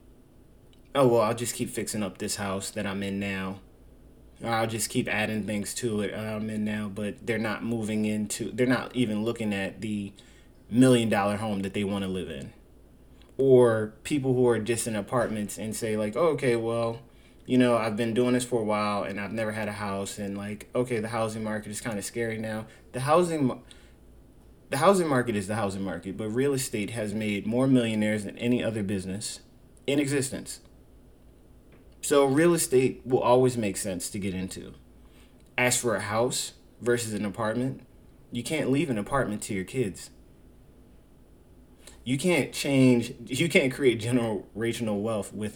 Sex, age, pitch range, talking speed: male, 20-39, 105-125 Hz, 185 wpm